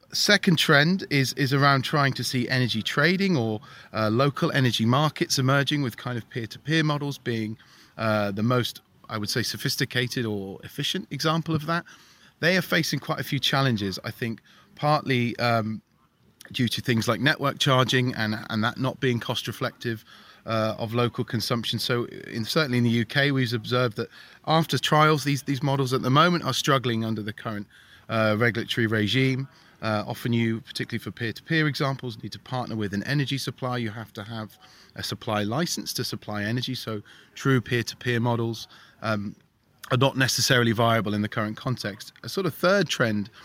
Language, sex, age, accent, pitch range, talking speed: English, male, 30-49, British, 110-140 Hz, 185 wpm